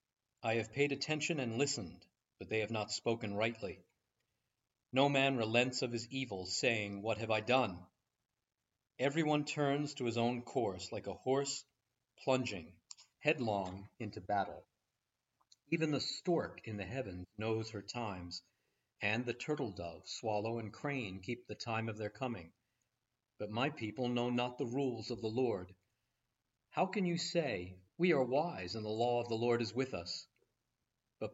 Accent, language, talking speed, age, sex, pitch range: American, English, 160 wpm, 40-59, male, 105-130 Hz